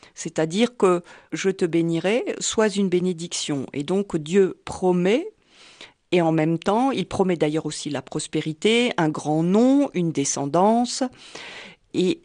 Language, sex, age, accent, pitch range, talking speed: French, female, 40-59, French, 170-220 Hz, 150 wpm